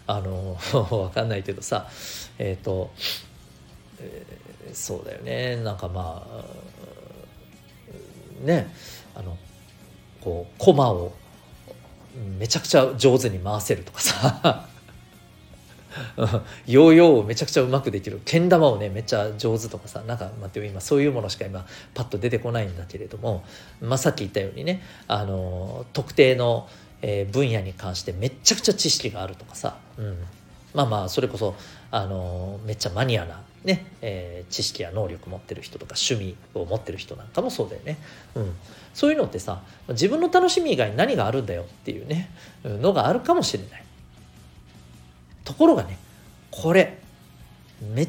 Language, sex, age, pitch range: Japanese, male, 40-59, 95-140 Hz